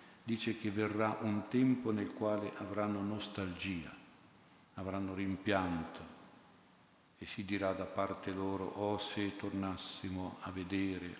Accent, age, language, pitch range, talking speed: native, 50-69, Italian, 95-105 Hz, 120 wpm